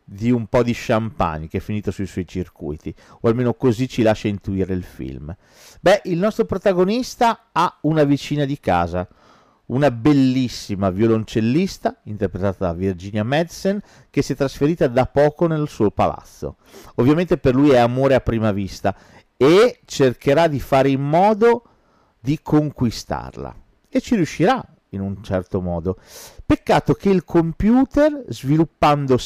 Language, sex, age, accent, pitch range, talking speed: Italian, male, 40-59, native, 105-160 Hz, 150 wpm